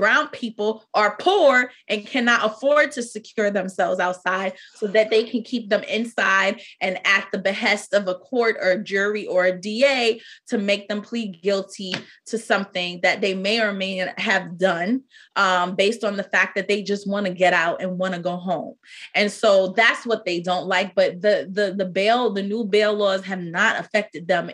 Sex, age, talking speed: female, 20-39, 205 wpm